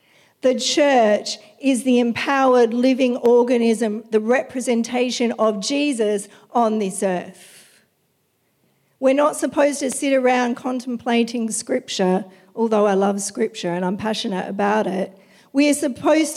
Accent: Australian